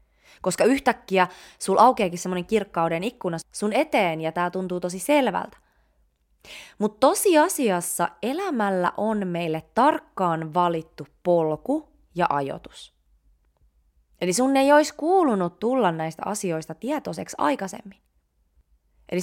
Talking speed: 110 wpm